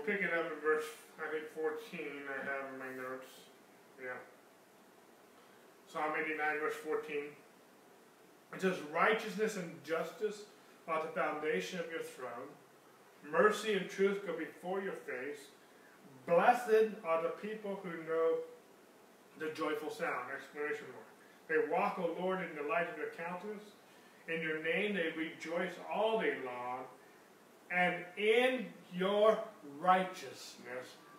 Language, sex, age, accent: English, male, 30-49, American